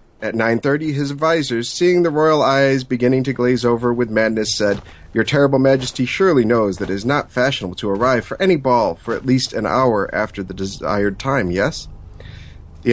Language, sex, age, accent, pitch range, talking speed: English, male, 30-49, American, 110-145 Hz, 190 wpm